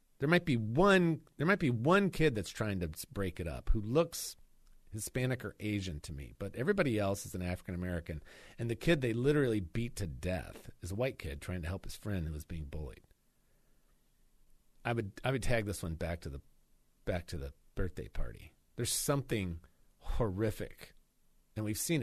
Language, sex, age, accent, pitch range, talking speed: English, male, 40-59, American, 90-130 Hz, 195 wpm